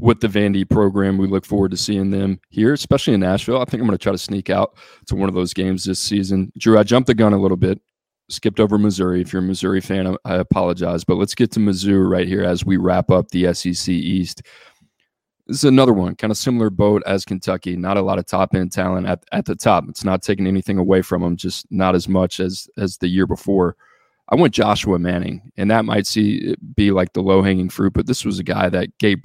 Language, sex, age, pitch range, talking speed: English, male, 20-39, 95-105 Hz, 240 wpm